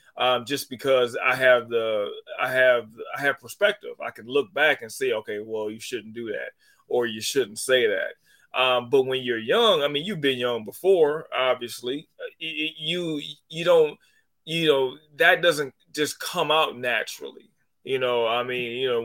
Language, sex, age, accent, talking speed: English, male, 30-49, American, 180 wpm